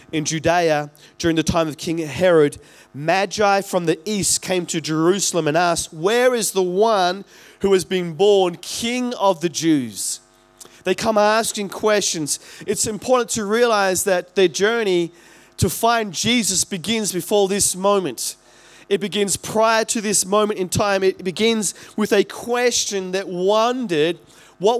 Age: 20-39